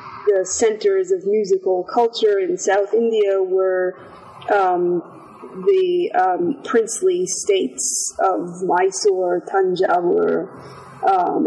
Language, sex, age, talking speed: English, female, 30-49, 95 wpm